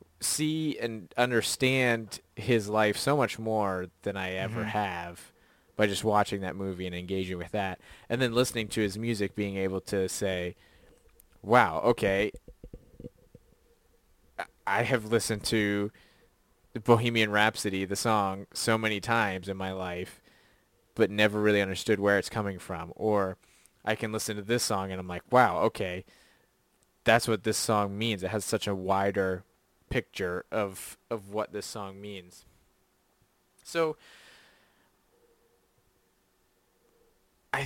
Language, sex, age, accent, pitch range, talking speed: English, male, 20-39, American, 95-110 Hz, 140 wpm